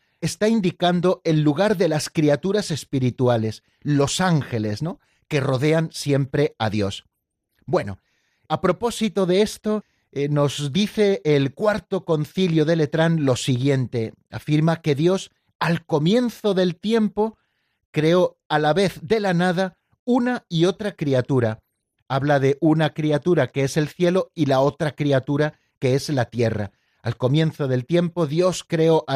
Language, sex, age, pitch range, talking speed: Spanish, male, 40-59, 135-180 Hz, 150 wpm